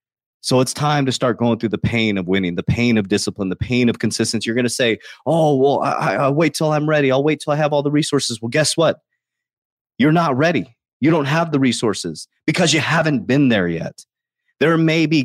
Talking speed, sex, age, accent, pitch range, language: 230 wpm, male, 30-49, American, 115-145 Hz, English